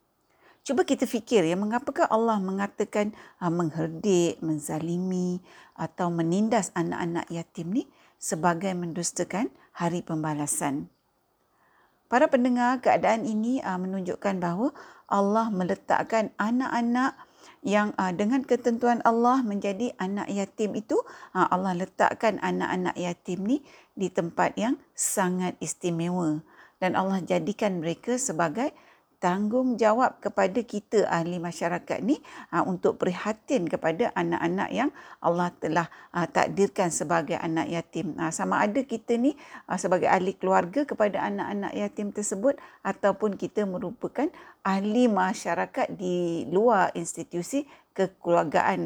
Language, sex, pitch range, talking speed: Malay, female, 175-240 Hz, 105 wpm